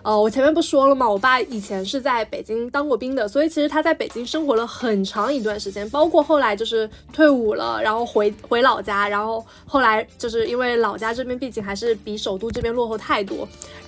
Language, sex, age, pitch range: Chinese, female, 20-39, 220-300 Hz